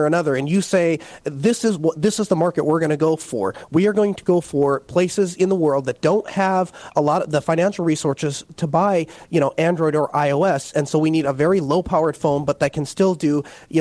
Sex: male